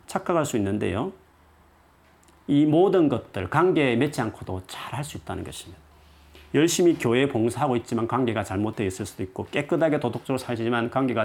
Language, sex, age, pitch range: Korean, male, 40-59, 95-130 Hz